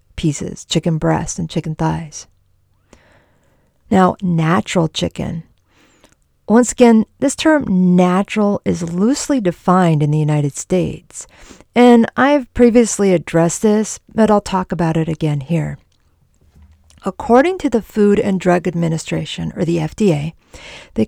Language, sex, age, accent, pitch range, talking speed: English, female, 50-69, American, 165-210 Hz, 125 wpm